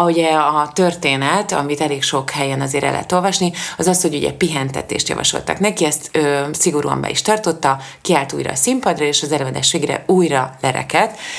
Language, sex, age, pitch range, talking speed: Hungarian, female, 30-49, 140-170 Hz, 175 wpm